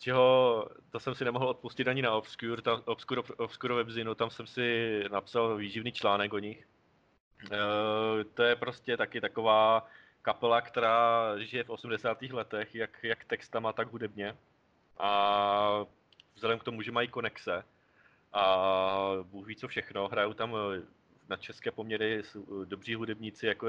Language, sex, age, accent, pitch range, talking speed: Czech, male, 20-39, native, 110-130 Hz, 145 wpm